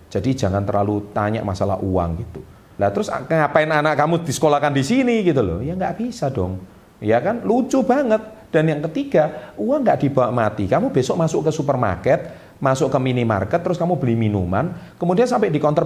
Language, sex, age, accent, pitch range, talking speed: Indonesian, male, 40-59, native, 105-170 Hz, 180 wpm